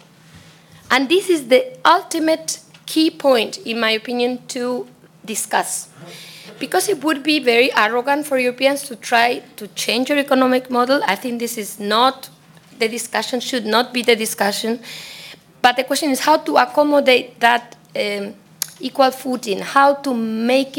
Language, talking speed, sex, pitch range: English, 155 wpm, female, 200-265 Hz